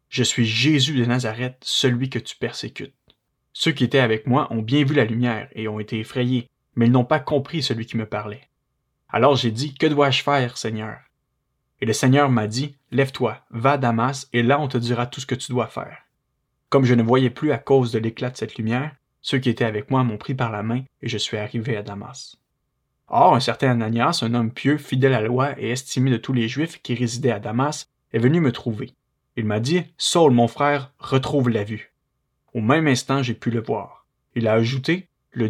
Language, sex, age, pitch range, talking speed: French, male, 20-39, 115-140 Hz, 225 wpm